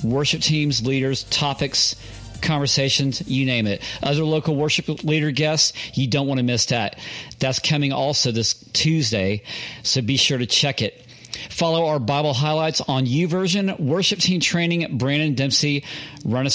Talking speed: 155 wpm